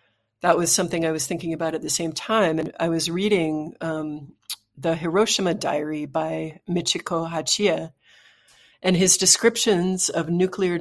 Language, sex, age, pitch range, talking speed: English, female, 40-59, 155-185 Hz, 150 wpm